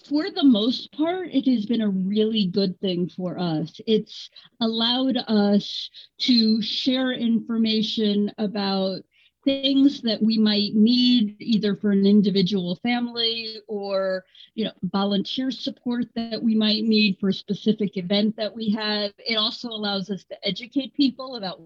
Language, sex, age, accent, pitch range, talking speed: English, female, 40-59, American, 195-235 Hz, 145 wpm